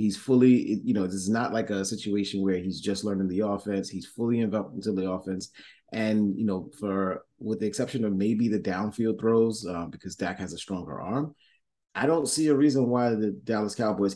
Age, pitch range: 30-49, 95-115 Hz